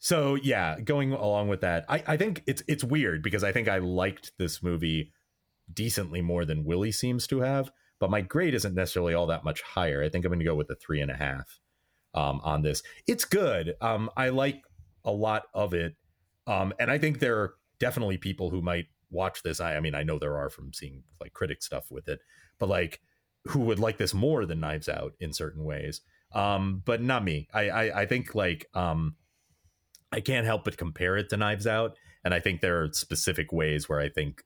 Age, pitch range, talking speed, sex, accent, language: 30-49, 80-110 Hz, 220 wpm, male, American, English